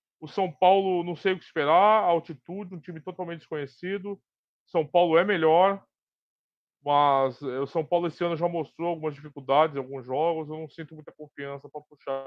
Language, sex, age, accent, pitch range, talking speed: Portuguese, male, 20-39, Brazilian, 140-175 Hz, 175 wpm